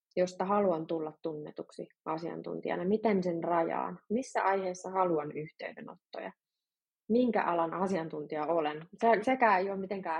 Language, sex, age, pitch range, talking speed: Finnish, female, 20-39, 165-210 Hz, 120 wpm